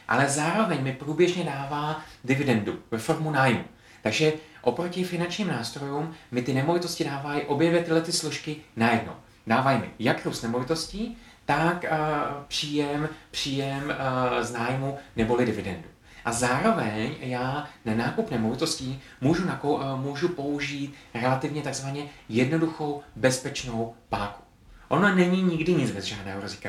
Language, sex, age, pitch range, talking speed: Czech, male, 30-49, 120-165 Hz, 125 wpm